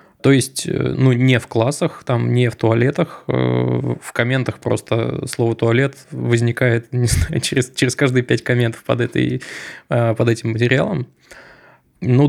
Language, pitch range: Russian, 115-135 Hz